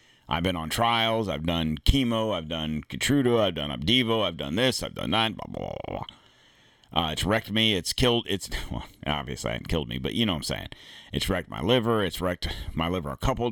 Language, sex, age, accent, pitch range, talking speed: English, male, 40-59, American, 80-115 Hz, 205 wpm